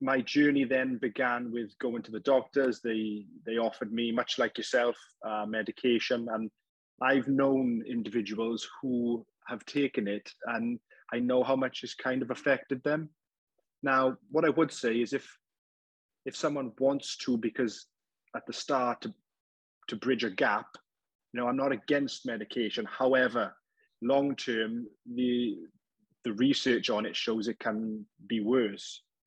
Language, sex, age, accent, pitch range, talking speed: English, male, 20-39, British, 110-135 Hz, 155 wpm